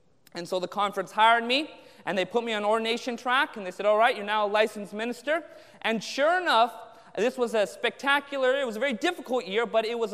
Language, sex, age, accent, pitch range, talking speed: English, male, 30-49, American, 210-305 Hz, 230 wpm